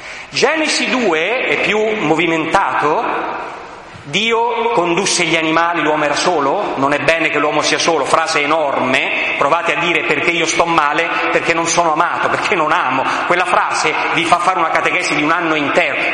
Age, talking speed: 40-59, 170 wpm